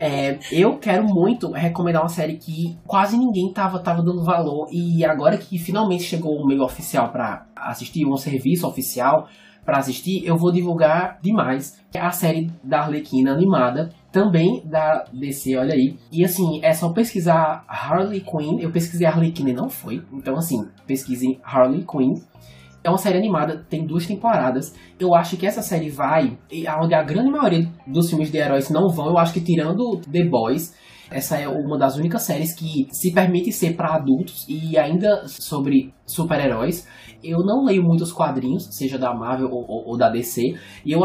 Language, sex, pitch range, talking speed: Portuguese, male, 140-180 Hz, 185 wpm